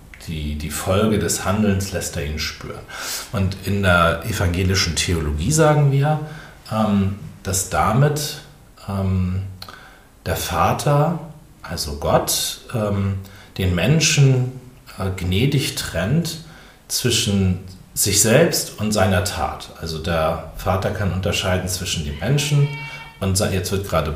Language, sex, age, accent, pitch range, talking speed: German, male, 40-59, German, 90-130 Hz, 110 wpm